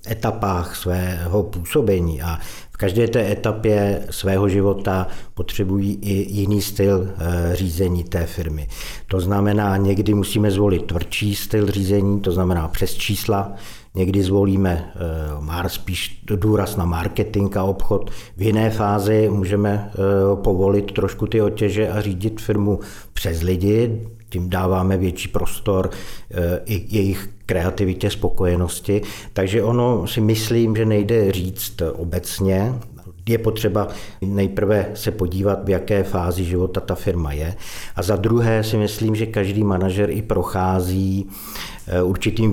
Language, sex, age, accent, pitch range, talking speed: Czech, male, 50-69, native, 90-105 Hz, 125 wpm